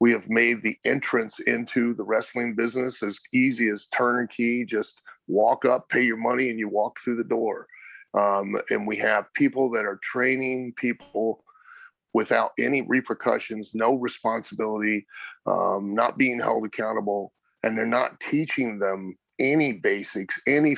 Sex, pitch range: male, 110-140 Hz